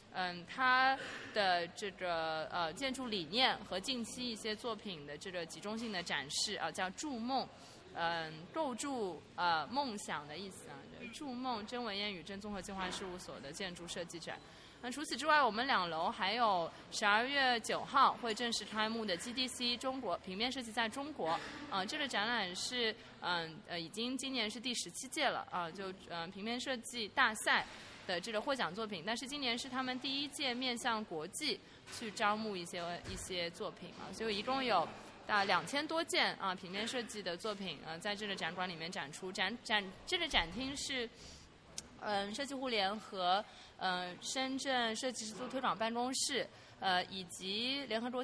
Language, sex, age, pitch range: Chinese, female, 20-39, 185-255 Hz